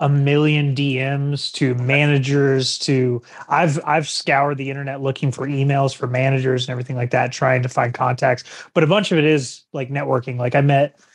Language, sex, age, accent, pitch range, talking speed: English, male, 20-39, American, 130-160 Hz, 190 wpm